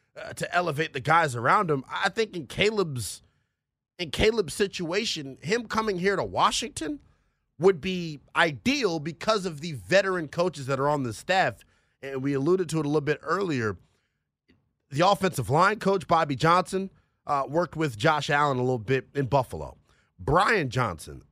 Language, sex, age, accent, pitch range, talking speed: English, male, 30-49, American, 125-185 Hz, 165 wpm